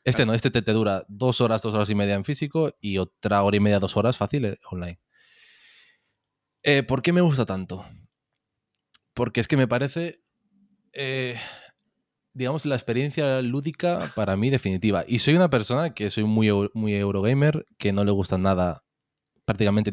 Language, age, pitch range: Spanish, 20-39, 100-130 Hz